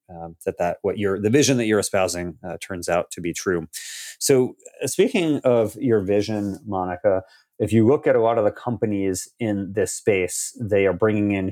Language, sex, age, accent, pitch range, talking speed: English, male, 30-49, American, 90-115 Hz, 205 wpm